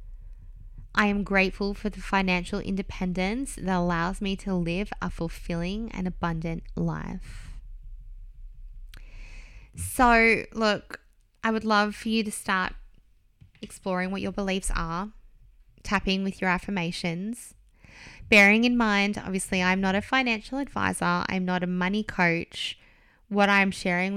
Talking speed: 130 wpm